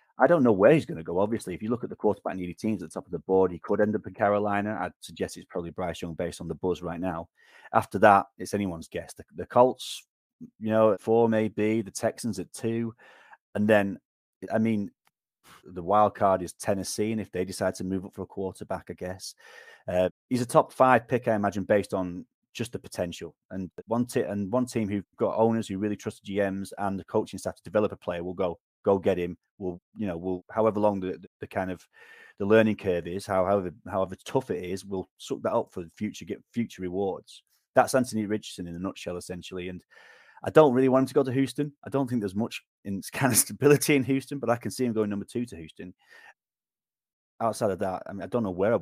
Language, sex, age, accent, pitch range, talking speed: English, male, 30-49, British, 90-110 Hz, 240 wpm